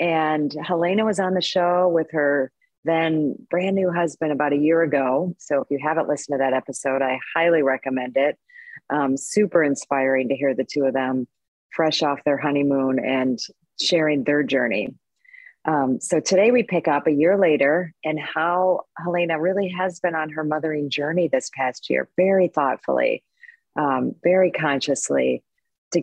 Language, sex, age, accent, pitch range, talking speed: English, female, 40-59, American, 140-170 Hz, 170 wpm